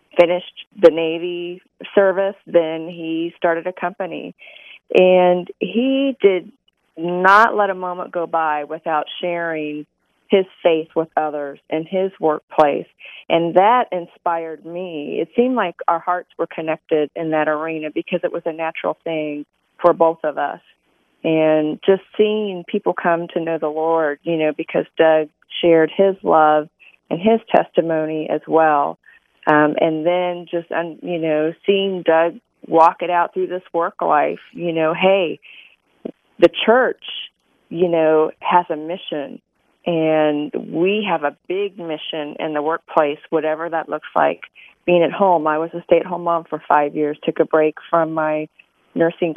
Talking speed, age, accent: 155 wpm, 40-59, American